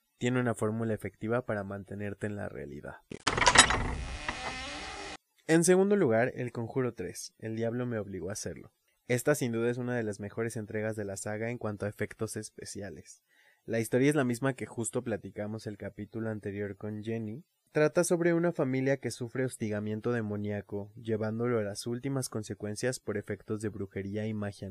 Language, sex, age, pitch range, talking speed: Spanish, male, 20-39, 105-125 Hz, 170 wpm